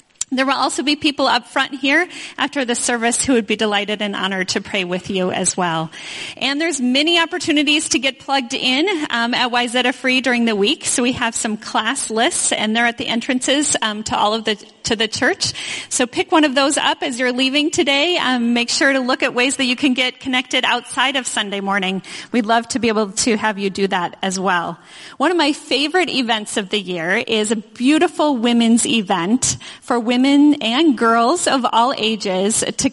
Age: 30-49